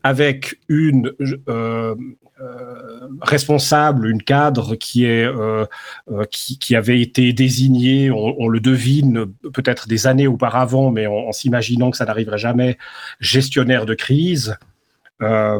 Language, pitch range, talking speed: French, 115-140 Hz, 135 wpm